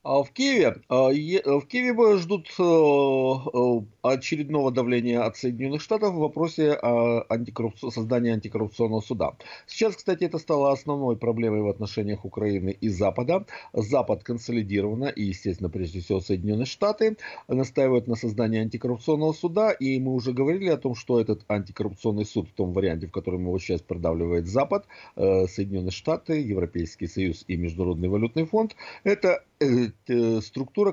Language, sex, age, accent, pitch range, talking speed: Russian, male, 50-69, native, 95-130 Hz, 130 wpm